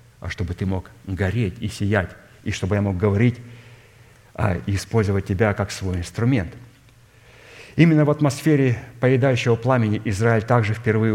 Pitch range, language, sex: 105-120 Hz, Russian, male